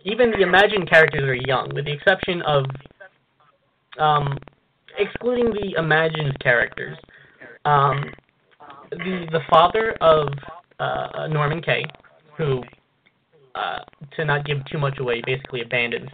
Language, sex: English, male